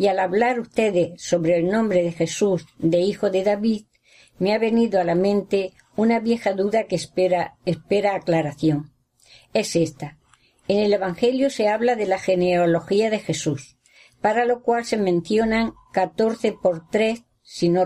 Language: Spanish